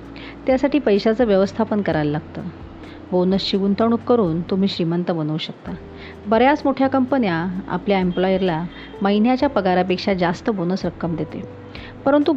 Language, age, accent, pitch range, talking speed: Marathi, 40-59, native, 180-225 Hz, 115 wpm